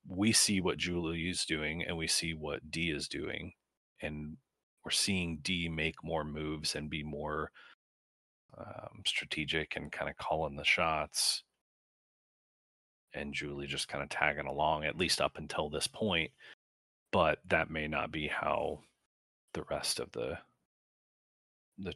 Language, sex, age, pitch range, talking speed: English, male, 30-49, 75-85 Hz, 150 wpm